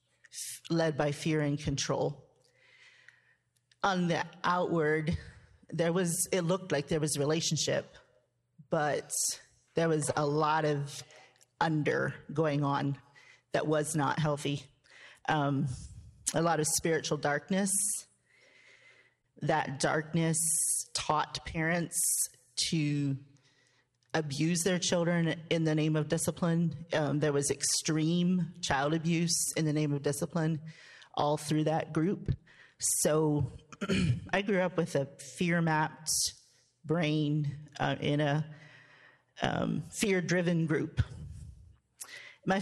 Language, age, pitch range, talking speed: English, 40-59, 140-170 Hz, 110 wpm